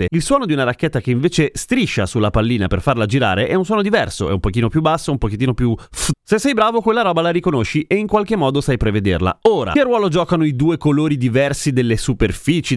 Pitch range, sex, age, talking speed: 115-170 Hz, male, 30-49, 225 wpm